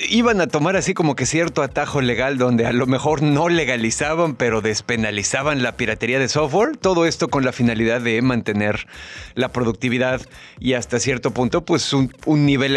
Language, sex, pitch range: Spanish, male, 120-155 Hz